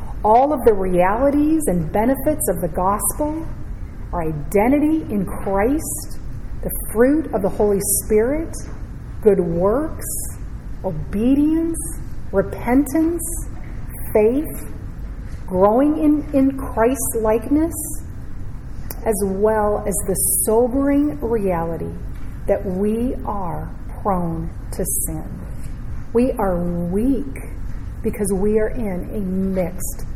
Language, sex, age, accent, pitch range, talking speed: English, female, 40-59, American, 185-265 Hz, 100 wpm